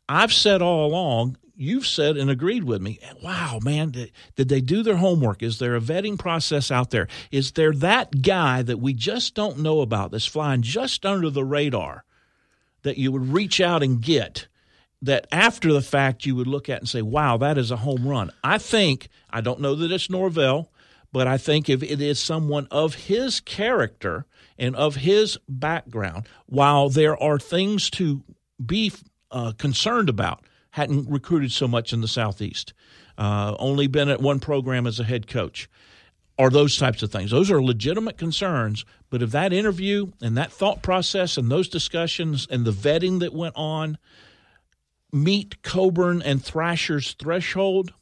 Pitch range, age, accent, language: 125-170 Hz, 50-69, American, English